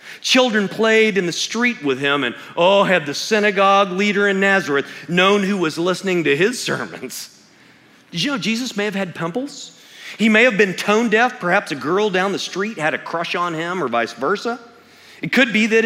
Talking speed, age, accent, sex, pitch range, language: 205 wpm, 40-59, American, male, 135-215 Hz, English